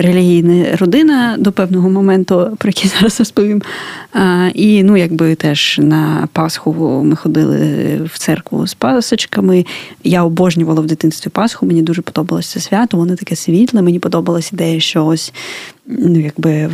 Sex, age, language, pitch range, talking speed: female, 20-39, Ukrainian, 165-200 Hz, 150 wpm